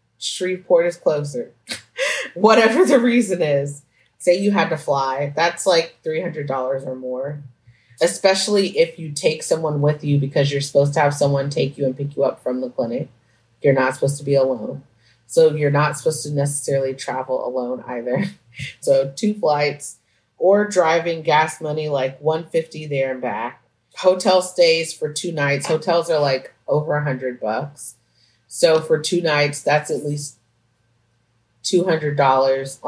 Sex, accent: female, American